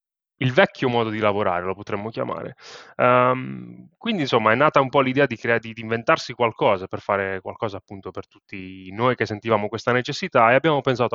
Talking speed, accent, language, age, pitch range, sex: 180 wpm, native, Italian, 20-39, 105-130 Hz, male